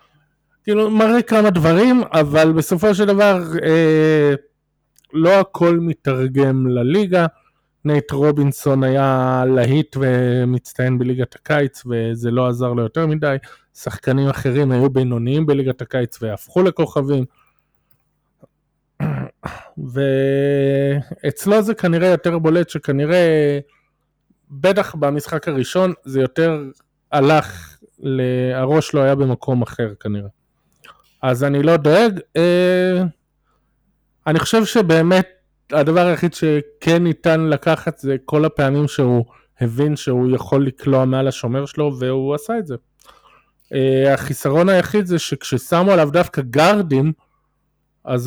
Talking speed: 110 wpm